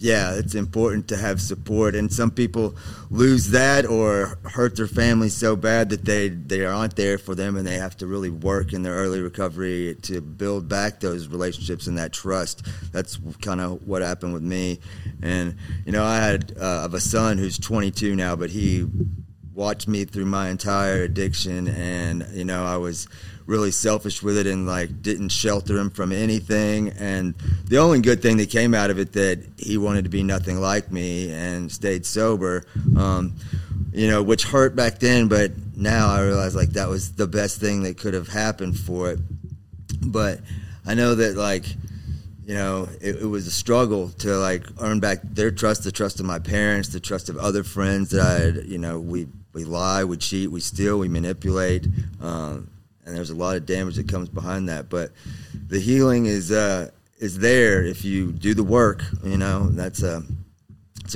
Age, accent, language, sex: 30-49, American, English, male